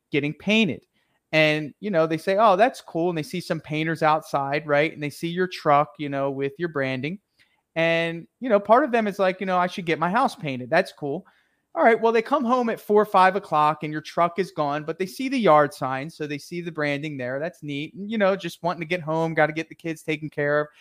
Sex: male